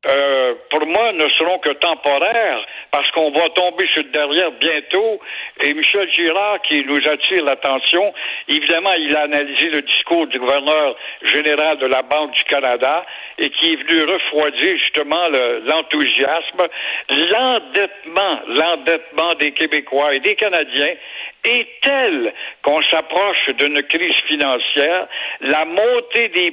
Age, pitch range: 60-79, 150-225 Hz